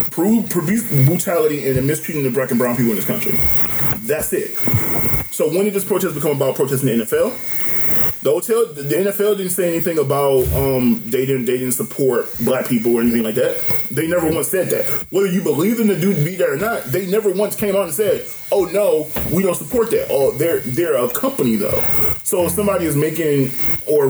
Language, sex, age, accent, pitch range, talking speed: English, male, 20-39, American, 135-220 Hz, 215 wpm